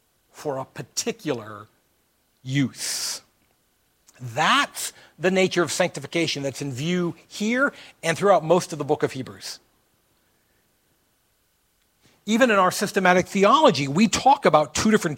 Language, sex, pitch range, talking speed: English, male, 150-230 Hz, 125 wpm